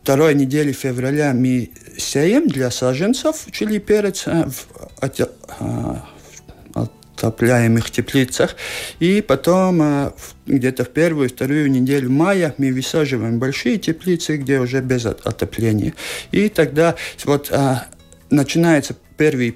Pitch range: 120-150 Hz